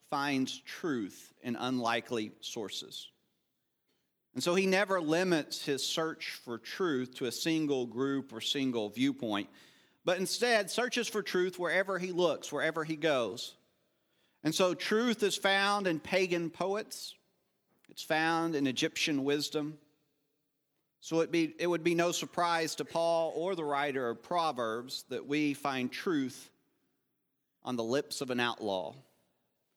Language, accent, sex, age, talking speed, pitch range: English, American, male, 40-59, 140 wpm, 140-175 Hz